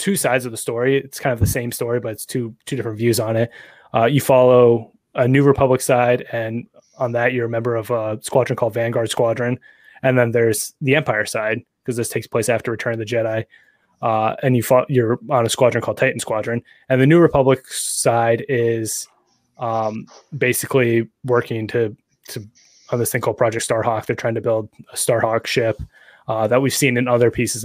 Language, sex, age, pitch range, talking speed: English, male, 20-39, 115-130 Hz, 205 wpm